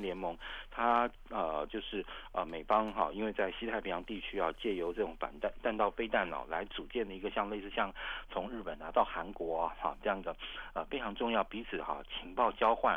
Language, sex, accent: Chinese, male, native